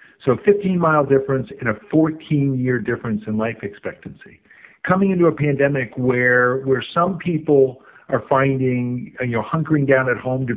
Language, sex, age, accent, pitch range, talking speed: English, male, 50-69, American, 120-145 Hz, 155 wpm